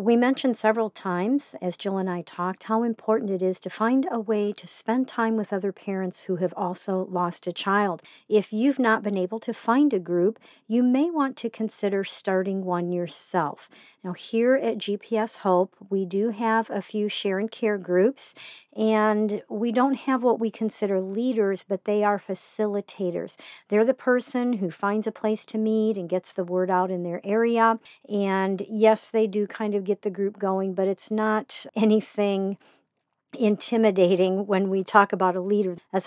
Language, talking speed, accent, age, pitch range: English, 185 wpm, American, 50-69, 190-225 Hz